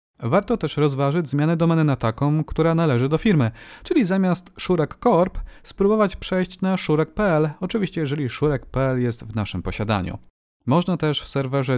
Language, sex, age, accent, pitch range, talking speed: Polish, male, 30-49, native, 130-180 Hz, 155 wpm